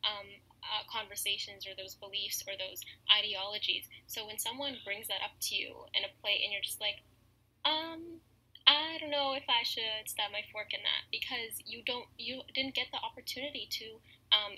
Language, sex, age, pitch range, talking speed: English, female, 10-29, 200-245 Hz, 190 wpm